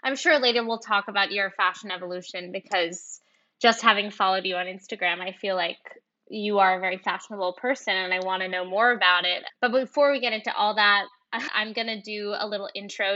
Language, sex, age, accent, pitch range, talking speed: English, female, 10-29, American, 195-235 Hz, 215 wpm